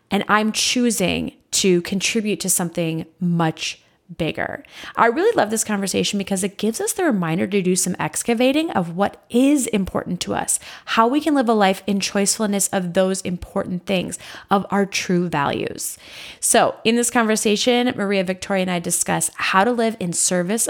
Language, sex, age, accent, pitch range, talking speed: English, female, 20-39, American, 190-245 Hz, 175 wpm